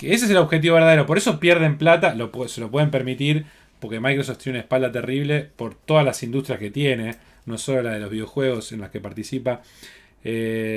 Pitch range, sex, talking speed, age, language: 125-180 Hz, male, 200 wpm, 20-39, Spanish